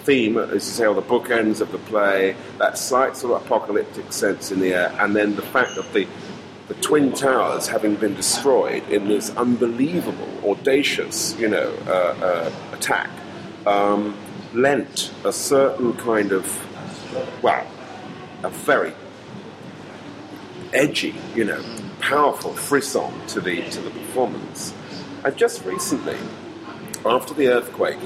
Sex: male